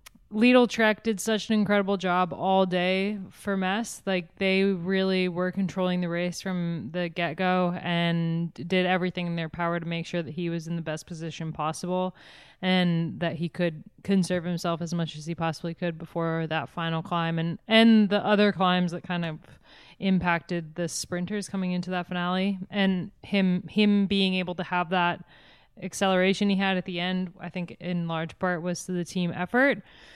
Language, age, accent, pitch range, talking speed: English, 20-39, American, 175-195 Hz, 185 wpm